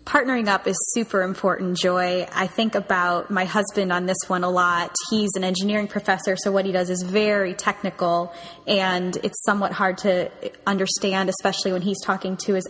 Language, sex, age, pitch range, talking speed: English, female, 10-29, 185-215 Hz, 185 wpm